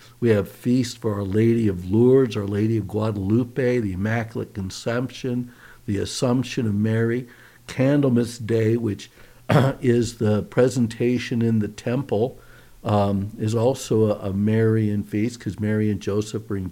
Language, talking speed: English, 145 wpm